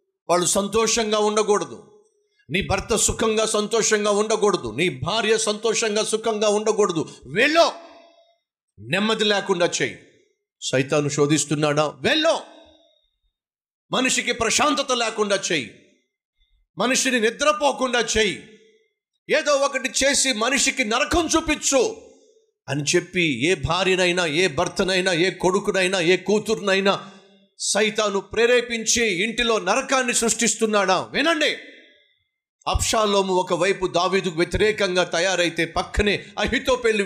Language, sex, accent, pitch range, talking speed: Telugu, male, native, 165-245 Hz, 90 wpm